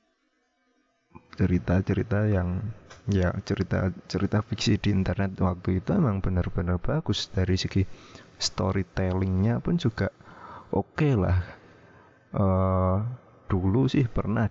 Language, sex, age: Indonesian, male, 30-49